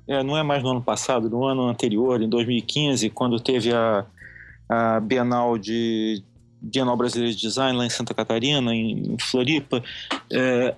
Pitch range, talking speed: 115-145 Hz, 160 wpm